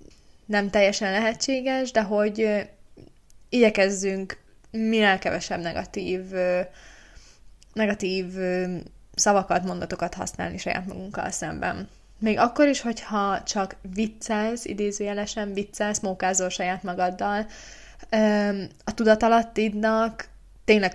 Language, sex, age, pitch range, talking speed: Hungarian, female, 20-39, 190-215 Hz, 85 wpm